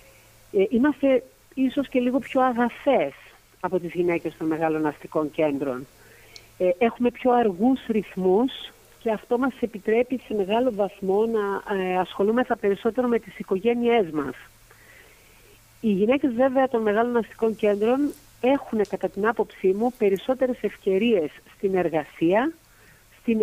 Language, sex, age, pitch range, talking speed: Greek, female, 50-69, 185-250 Hz, 125 wpm